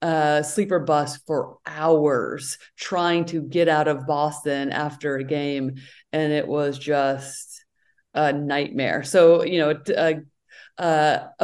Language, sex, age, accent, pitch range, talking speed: English, female, 30-49, American, 150-190 Hz, 135 wpm